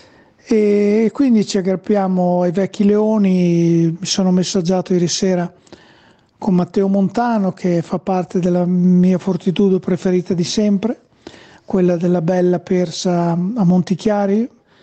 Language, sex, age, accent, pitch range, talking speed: Italian, male, 40-59, native, 180-215 Hz, 120 wpm